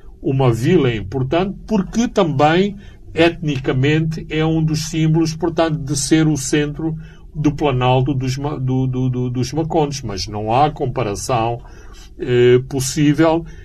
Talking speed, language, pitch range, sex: 130 wpm, Portuguese, 105-140 Hz, male